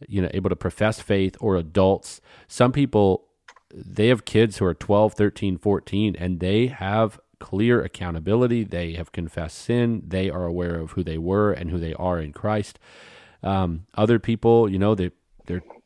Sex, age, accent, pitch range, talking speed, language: male, 30-49, American, 90-110 Hz, 180 wpm, English